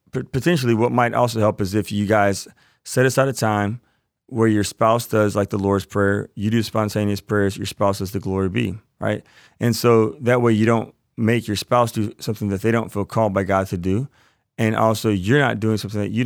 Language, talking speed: English, 220 wpm